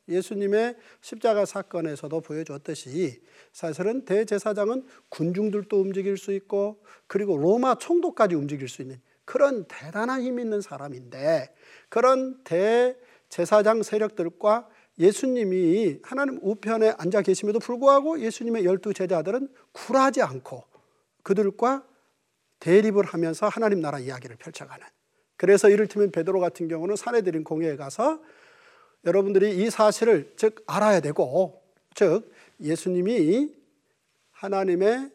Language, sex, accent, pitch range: Korean, male, native, 170-245 Hz